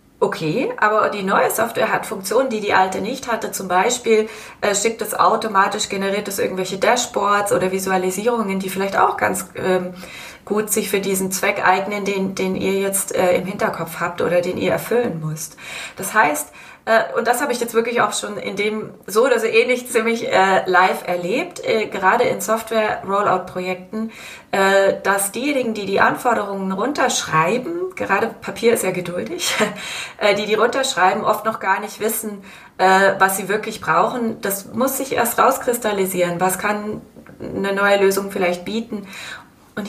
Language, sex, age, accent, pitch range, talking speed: German, female, 30-49, German, 185-225 Hz, 160 wpm